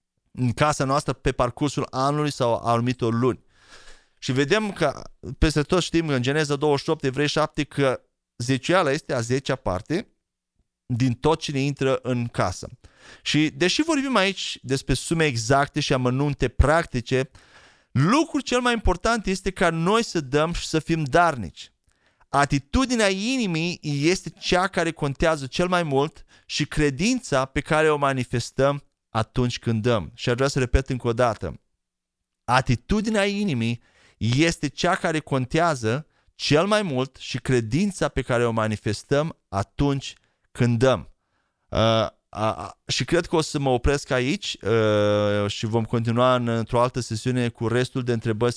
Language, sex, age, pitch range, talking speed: Romanian, male, 30-49, 120-155 Hz, 145 wpm